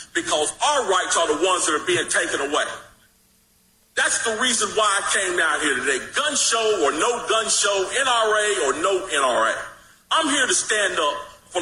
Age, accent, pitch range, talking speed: 40-59, American, 245-335 Hz, 185 wpm